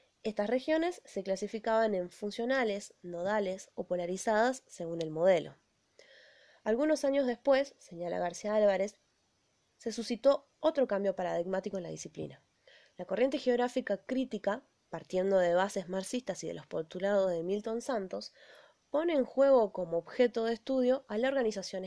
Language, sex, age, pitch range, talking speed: Spanish, female, 20-39, 185-255 Hz, 140 wpm